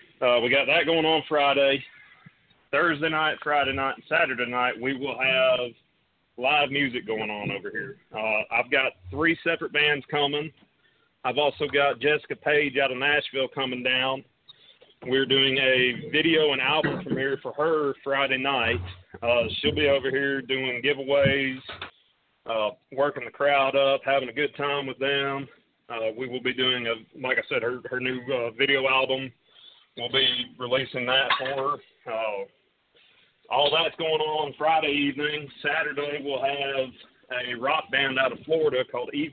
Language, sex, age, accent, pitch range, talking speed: English, male, 30-49, American, 130-160 Hz, 165 wpm